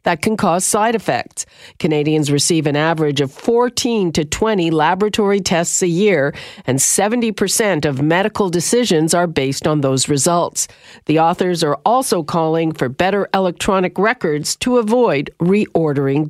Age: 50-69